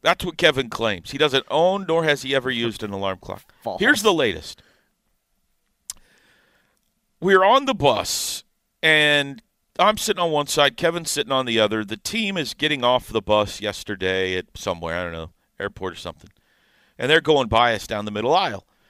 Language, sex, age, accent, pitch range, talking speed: English, male, 40-59, American, 105-150 Hz, 185 wpm